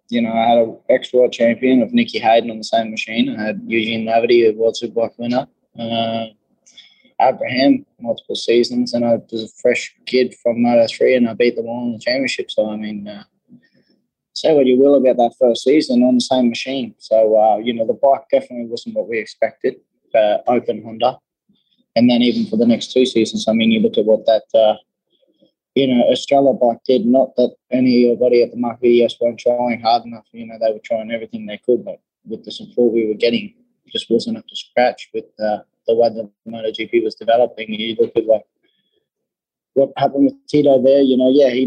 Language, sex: English, male